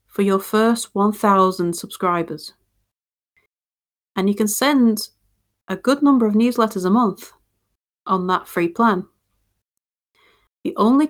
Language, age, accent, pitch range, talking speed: English, 30-49, British, 175-215 Hz, 120 wpm